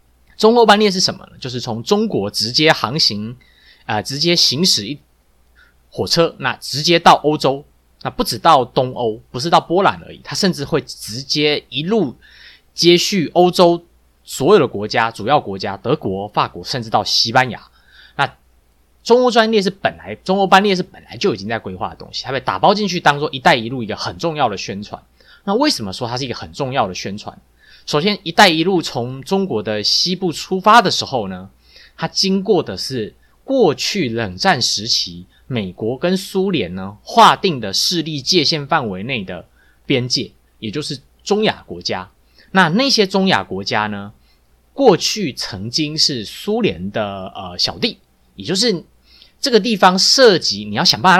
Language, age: Chinese, 20-39